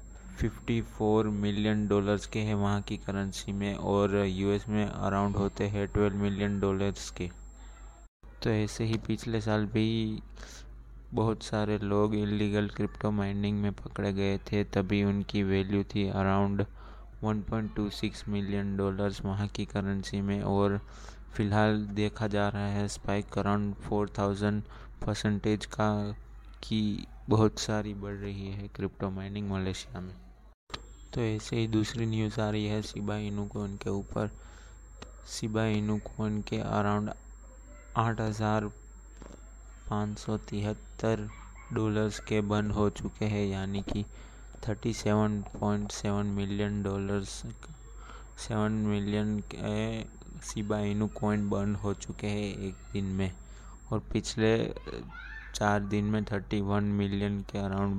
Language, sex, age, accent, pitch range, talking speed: Hindi, male, 20-39, native, 100-105 Hz, 120 wpm